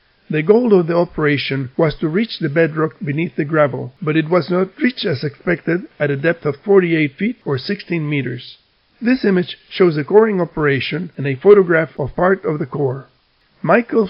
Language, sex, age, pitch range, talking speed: English, male, 50-69, 145-190 Hz, 185 wpm